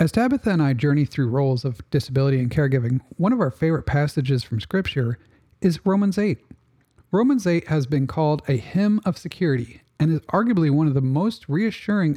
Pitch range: 135-185 Hz